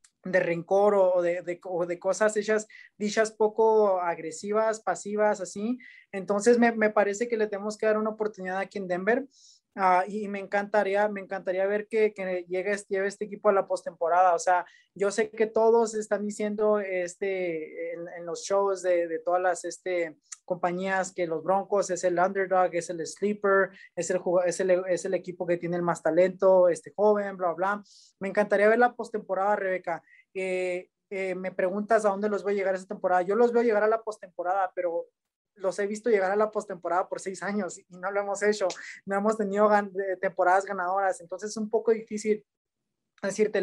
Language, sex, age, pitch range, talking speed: English, male, 20-39, 185-210 Hz, 195 wpm